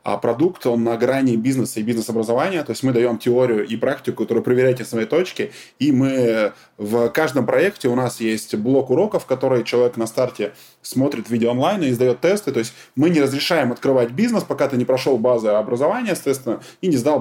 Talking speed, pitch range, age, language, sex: 200 wpm, 115-150 Hz, 20-39, Russian, male